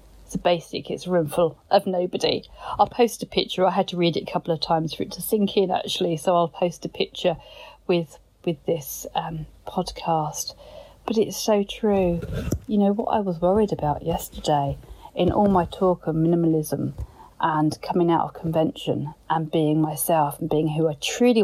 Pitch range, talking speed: 160-205 Hz, 190 wpm